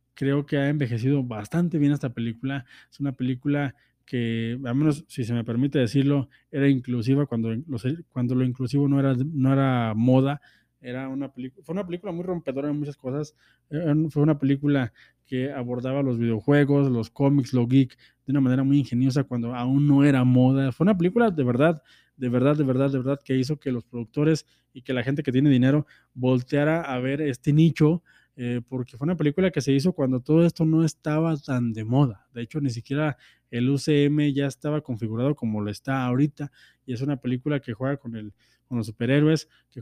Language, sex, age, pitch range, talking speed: Spanish, male, 20-39, 125-150 Hz, 200 wpm